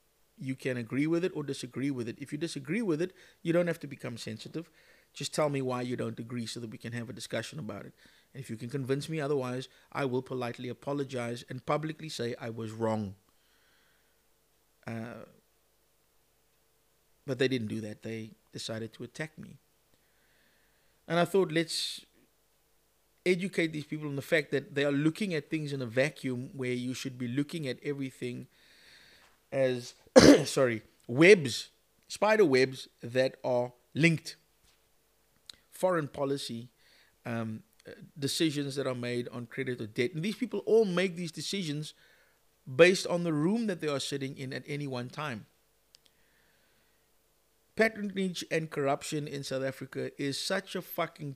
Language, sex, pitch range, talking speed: English, male, 125-160 Hz, 160 wpm